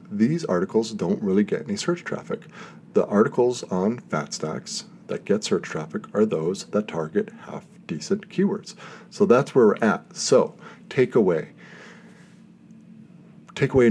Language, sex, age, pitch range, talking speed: English, male, 40-59, 160-205 Hz, 135 wpm